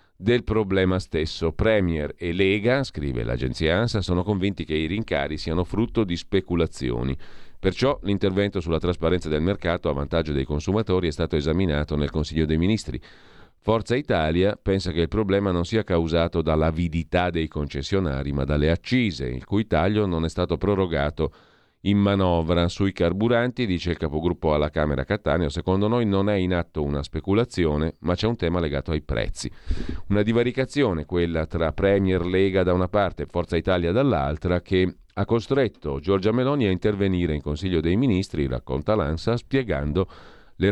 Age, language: 40-59, Italian